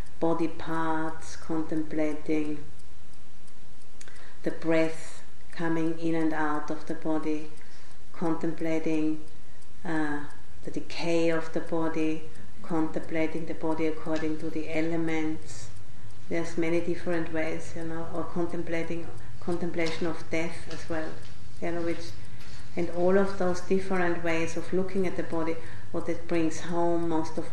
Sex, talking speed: female, 125 wpm